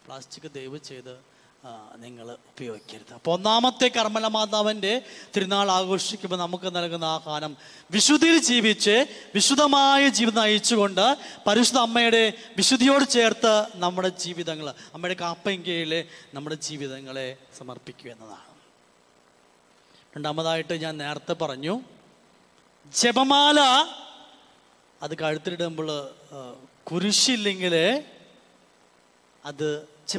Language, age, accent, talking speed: English, 20-39, Indian, 70 wpm